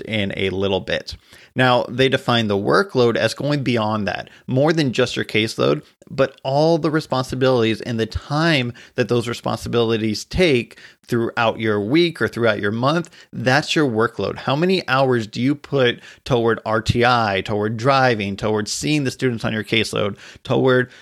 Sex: male